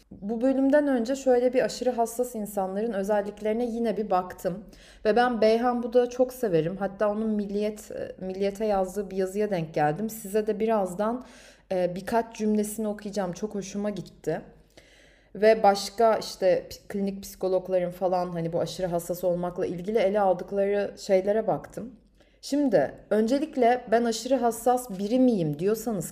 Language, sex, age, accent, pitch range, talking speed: Turkish, female, 30-49, native, 190-240 Hz, 140 wpm